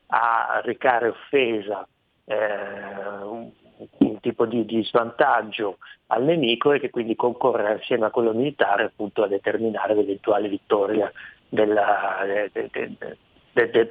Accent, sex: native, male